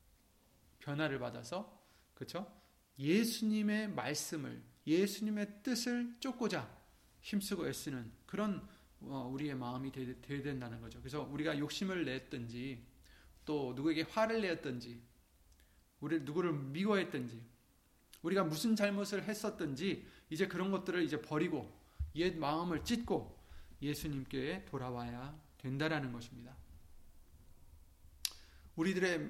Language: Korean